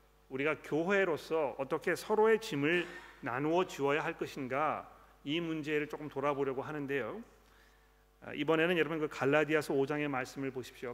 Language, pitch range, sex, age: Korean, 135-160 Hz, male, 40-59